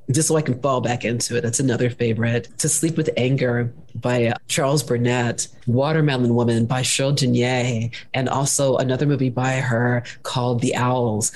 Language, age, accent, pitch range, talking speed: English, 40-59, American, 125-155 Hz, 175 wpm